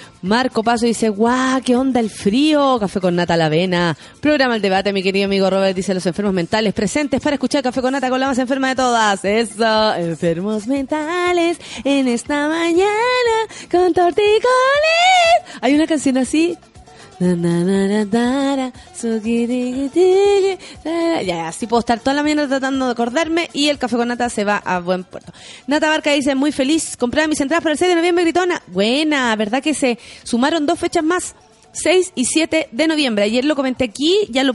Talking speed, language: 175 wpm, Spanish